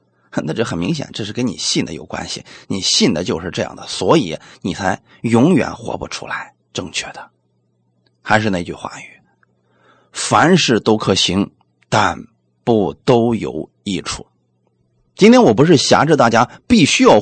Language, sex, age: Chinese, male, 30-49